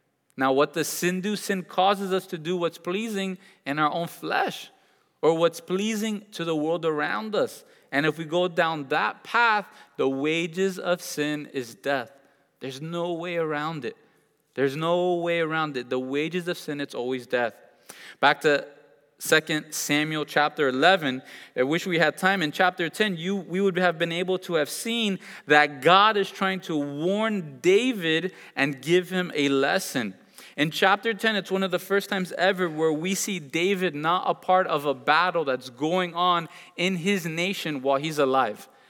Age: 20-39